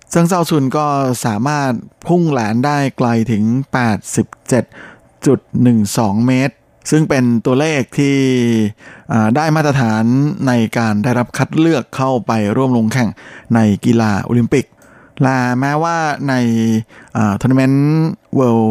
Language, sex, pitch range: Thai, male, 110-130 Hz